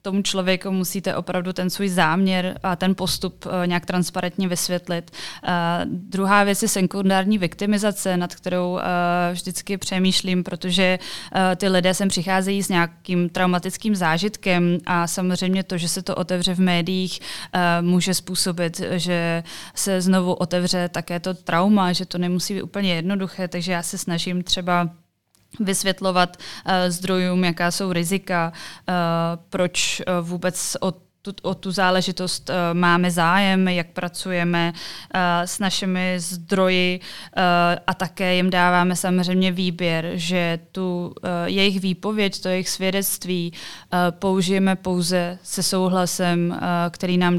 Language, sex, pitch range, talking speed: Czech, female, 175-190 Hz, 120 wpm